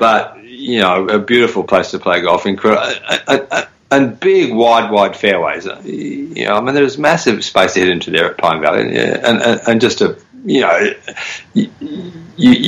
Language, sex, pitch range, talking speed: English, male, 95-125 Hz, 190 wpm